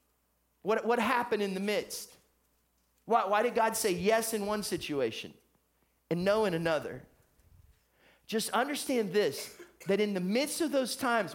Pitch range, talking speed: 175-235 Hz, 155 wpm